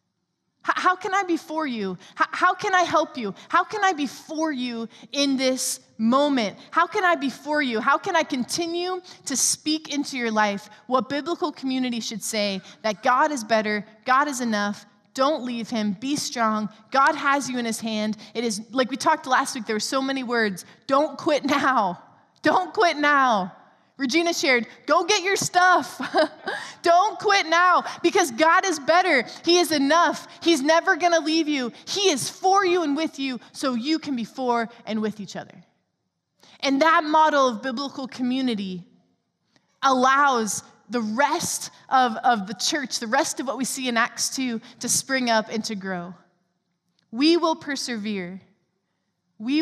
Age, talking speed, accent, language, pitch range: 20-39, 175 wpm, American, English, 220-315 Hz